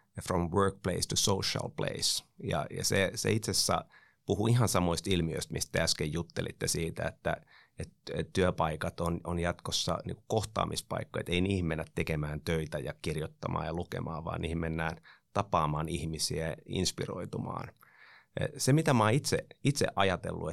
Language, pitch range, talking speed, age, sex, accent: Finnish, 80-95 Hz, 145 wpm, 30-49, male, native